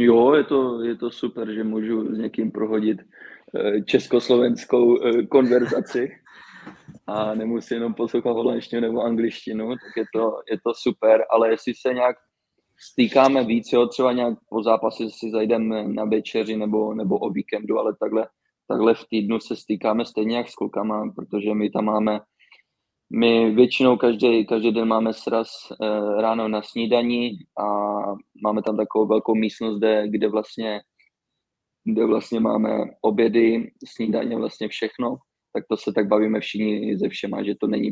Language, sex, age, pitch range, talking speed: Czech, male, 20-39, 105-115 Hz, 155 wpm